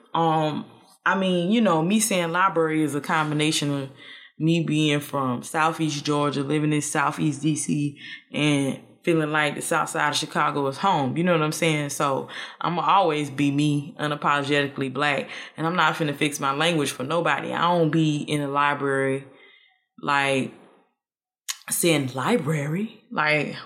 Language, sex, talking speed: English, female, 160 wpm